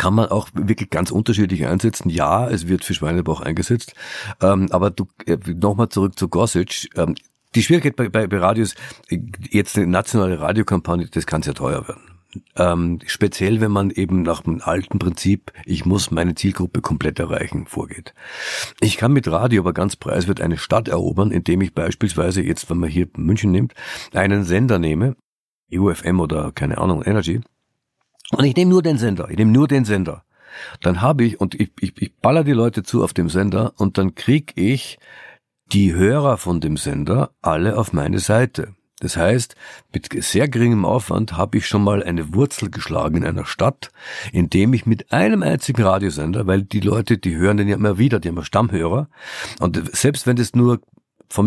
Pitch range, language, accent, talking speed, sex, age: 90-115 Hz, German, German, 180 wpm, male, 50-69